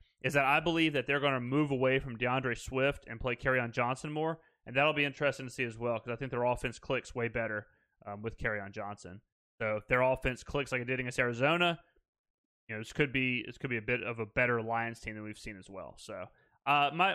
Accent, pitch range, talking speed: American, 120-155 Hz, 245 wpm